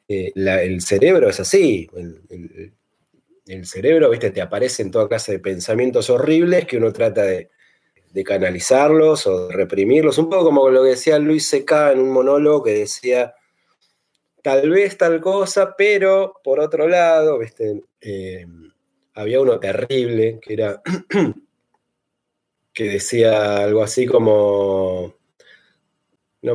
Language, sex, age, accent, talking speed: Spanish, male, 30-49, Argentinian, 140 wpm